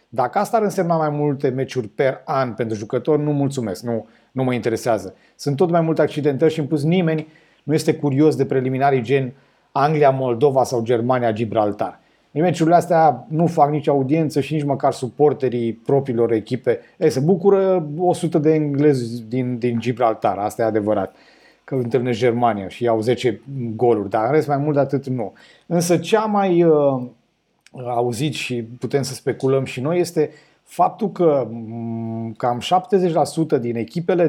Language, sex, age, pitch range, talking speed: Romanian, male, 30-49, 125-155 Hz, 160 wpm